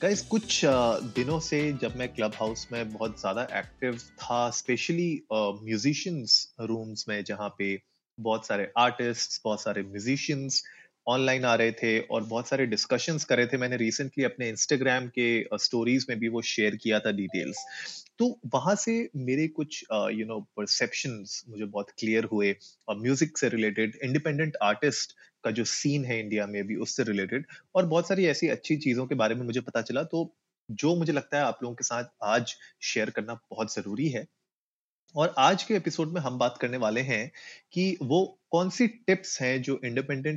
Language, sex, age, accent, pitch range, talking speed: Hindi, male, 30-49, native, 110-155 Hz, 165 wpm